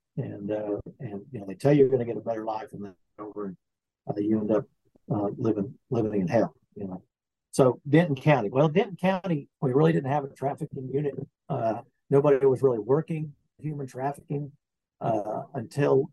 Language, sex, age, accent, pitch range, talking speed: English, male, 50-69, American, 110-140 Hz, 195 wpm